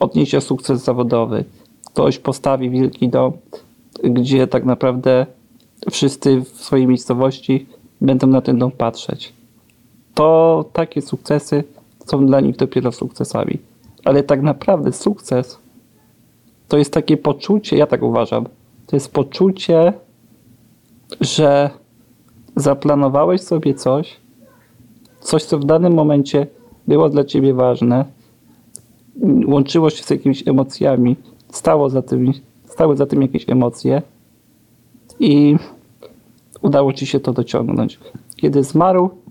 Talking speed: 110 wpm